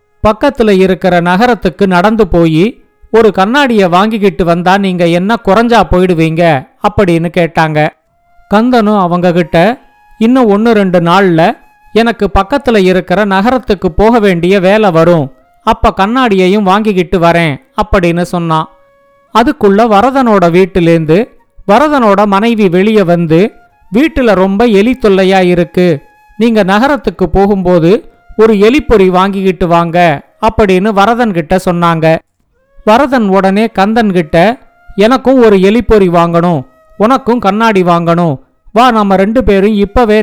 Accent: native